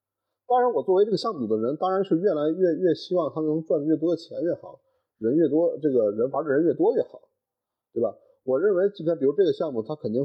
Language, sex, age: Chinese, male, 30-49